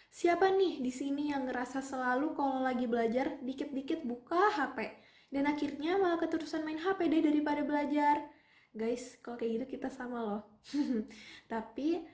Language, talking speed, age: Indonesian, 150 wpm, 10-29